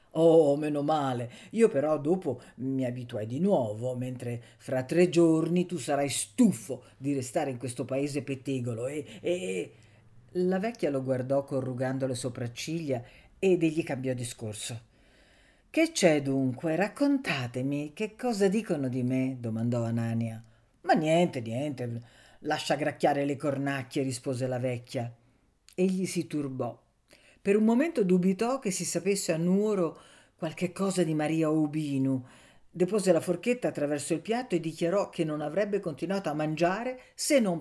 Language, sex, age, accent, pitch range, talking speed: Italian, female, 50-69, native, 130-180 Hz, 145 wpm